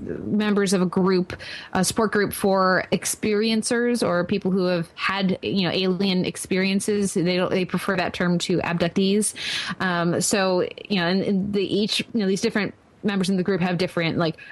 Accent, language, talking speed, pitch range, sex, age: American, English, 185 wpm, 175-205 Hz, female, 20-39